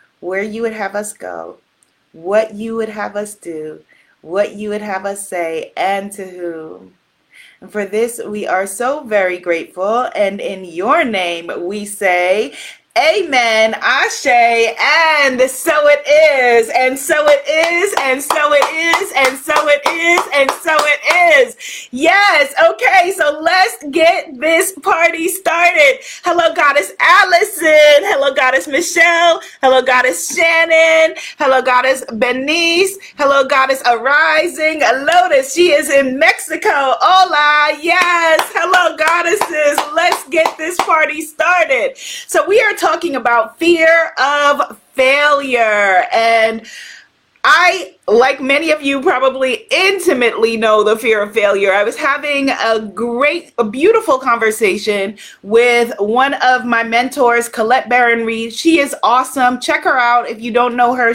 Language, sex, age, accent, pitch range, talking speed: English, female, 30-49, American, 230-335 Hz, 140 wpm